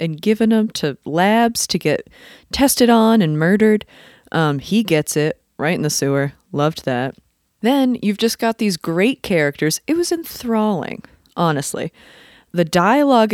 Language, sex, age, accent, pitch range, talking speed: English, female, 30-49, American, 160-225 Hz, 155 wpm